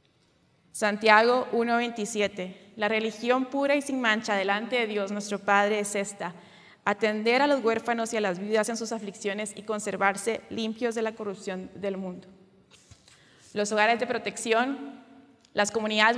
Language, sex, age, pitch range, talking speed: Spanish, female, 20-39, 205-245 Hz, 150 wpm